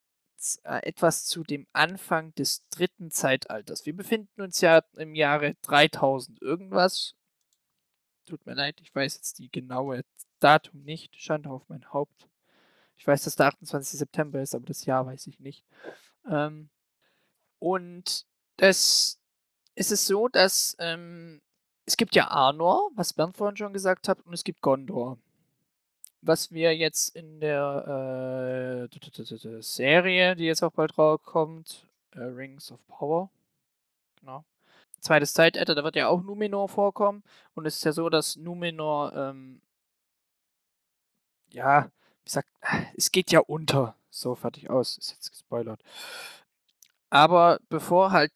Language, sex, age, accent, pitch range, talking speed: German, male, 20-39, German, 145-180 Hz, 140 wpm